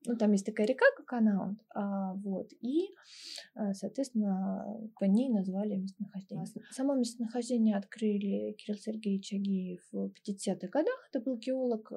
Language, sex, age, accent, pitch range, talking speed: Russian, female, 20-39, native, 200-245 Hz, 130 wpm